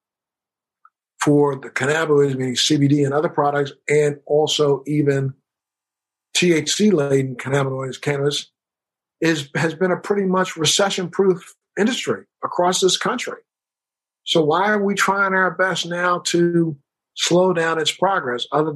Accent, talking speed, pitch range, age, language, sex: American, 125 wpm, 145-170 Hz, 60-79, English, male